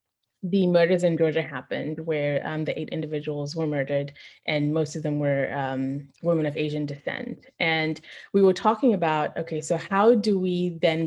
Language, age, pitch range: English, 20-39, 155-180 Hz